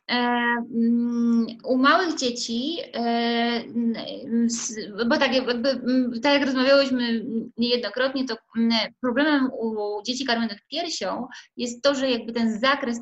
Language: Polish